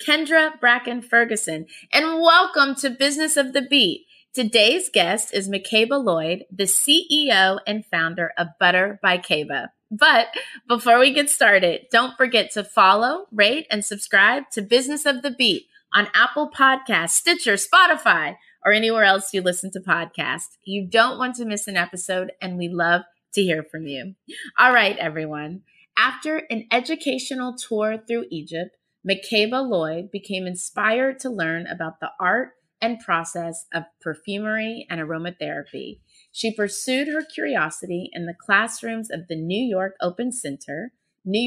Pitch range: 175-255 Hz